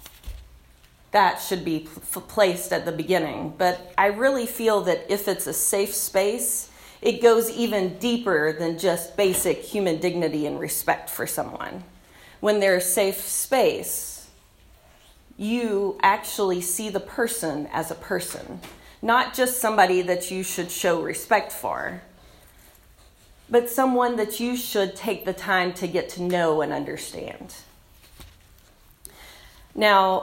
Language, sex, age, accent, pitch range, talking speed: English, female, 30-49, American, 180-225 Hz, 130 wpm